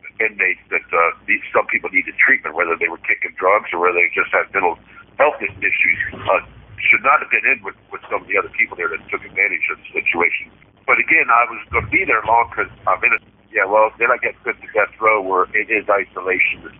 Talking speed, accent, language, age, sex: 245 wpm, American, English, 50-69, male